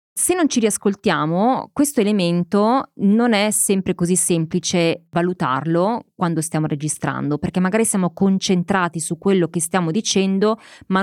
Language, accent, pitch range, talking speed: Italian, native, 165-225 Hz, 135 wpm